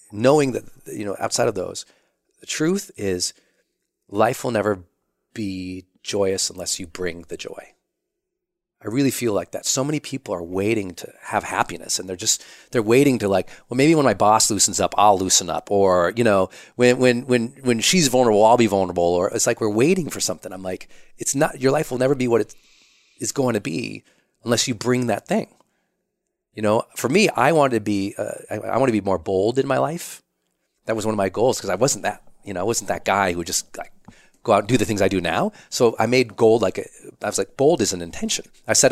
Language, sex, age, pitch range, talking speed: English, male, 30-49, 95-125 Hz, 235 wpm